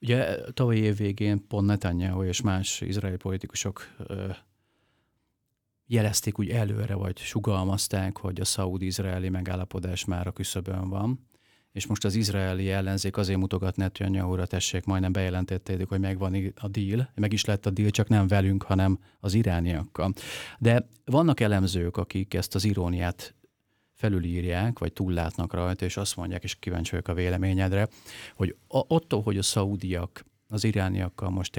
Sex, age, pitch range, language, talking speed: male, 40-59, 95-110 Hz, Hungarian, 145 wpm